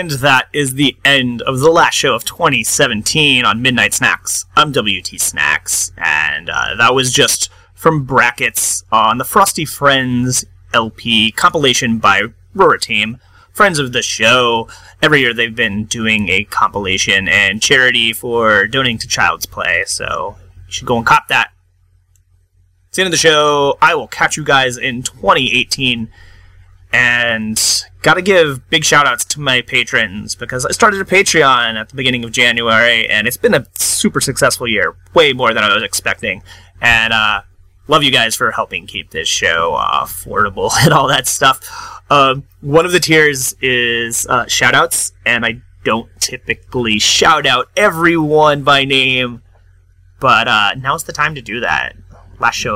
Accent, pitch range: American, 100-140 Hz